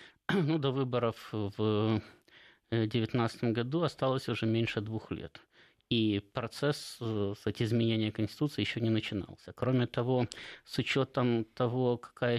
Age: 20-39